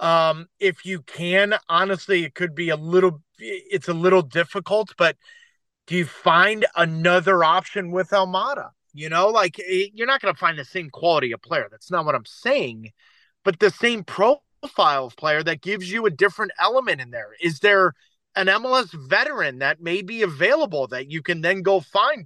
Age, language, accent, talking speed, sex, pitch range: 30-49, English, American, 185 wpm, male, 175-220 Hz